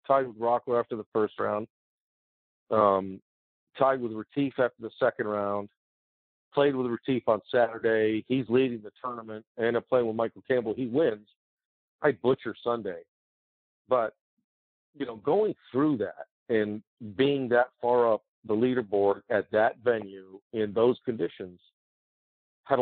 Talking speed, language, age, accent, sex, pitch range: 145 wpm, English, 50-69, American, male, 100-120 Hz